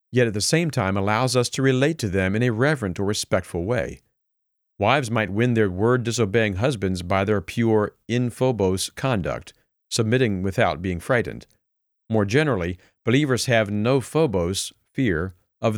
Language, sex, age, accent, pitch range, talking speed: English, male, 50-69, American, 100-130 Hz, 155 wpm